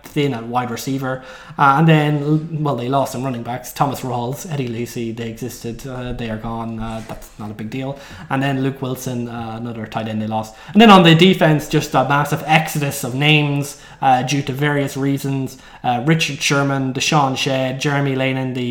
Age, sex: 20-39, male